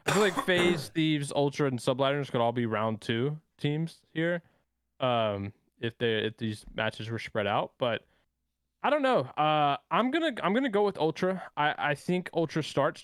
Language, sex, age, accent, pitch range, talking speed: English, male, 20-39, American, 110-140 Hz, 190 wpm